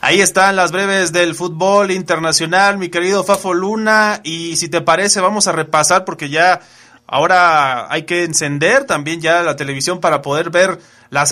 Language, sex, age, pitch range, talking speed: Spanish, male, 30-49, 155-205 Hz, 170 wpm